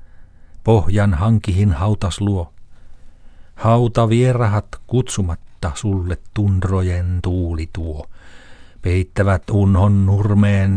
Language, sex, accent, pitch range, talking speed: Finnish, male, native, 85-110 Hz, 70 wpm